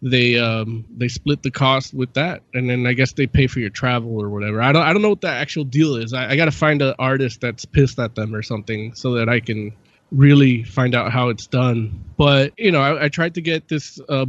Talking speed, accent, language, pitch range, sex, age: 260 wpm, American, English, 125-155 Hz, male, 20-39